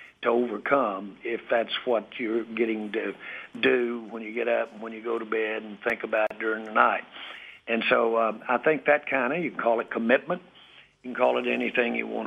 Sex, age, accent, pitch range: male, 60-79, American, 115-130 Hz